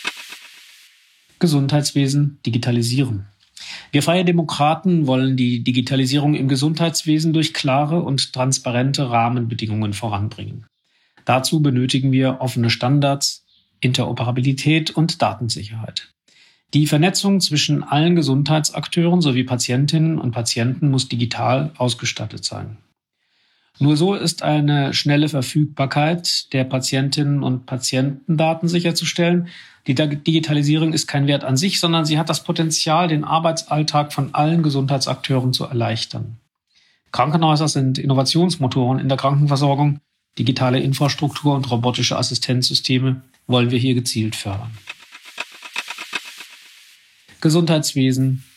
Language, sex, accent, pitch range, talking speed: German, male, German, 125-155 Hz, 105 wpm